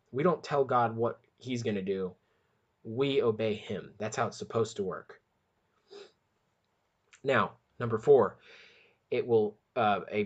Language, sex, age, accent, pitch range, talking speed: English, male, 20-39, American, 110-155 Hz, 145 wpm